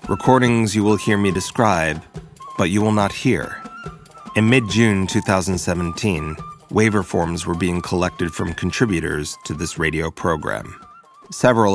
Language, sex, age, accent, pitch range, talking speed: English, male, 30-49, American, 85-105 Hz, 135 wpm